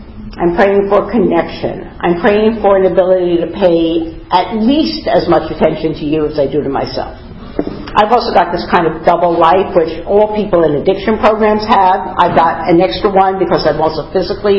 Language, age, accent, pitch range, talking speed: English, 50-69, American, 160-200 Hz, 195 wpm